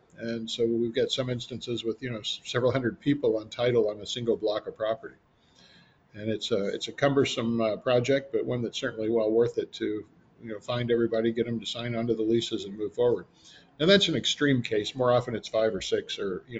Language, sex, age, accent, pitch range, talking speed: English, male, 50-69, American, 110-135 Hz, 230 wpm